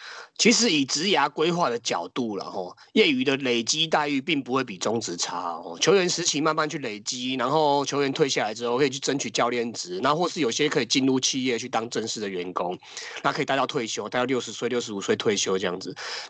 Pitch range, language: 115-150 Hz, Chinese